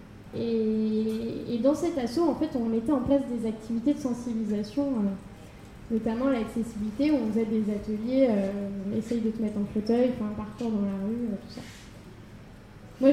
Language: French